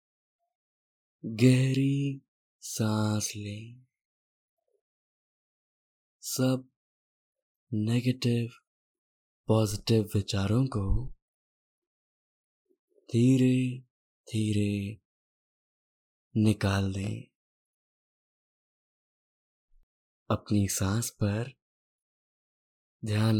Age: 20-39